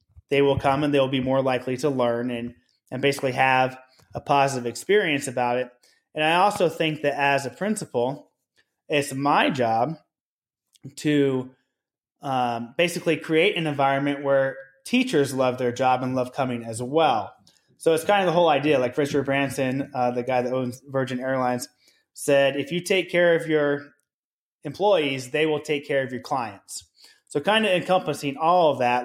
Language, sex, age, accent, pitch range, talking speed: English, male, 20-39, American, 130-155 Hz, 175 wpm